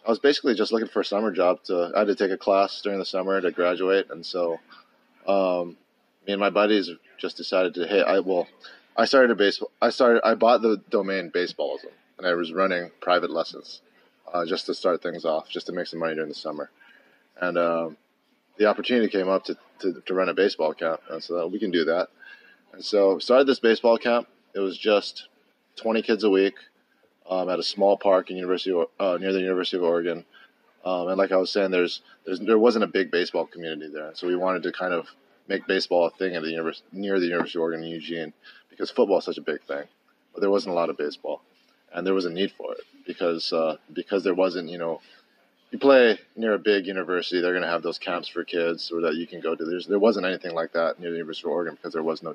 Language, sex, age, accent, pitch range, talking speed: English, male, 30-49, American, 85-100 Hz, 240 wpm